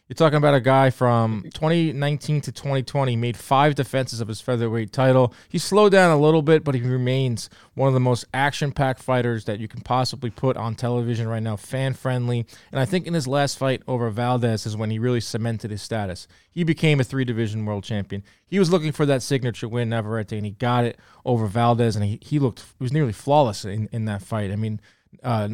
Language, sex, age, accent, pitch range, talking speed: English, male, 20-39, American, 115-140 Hz, 215 wpm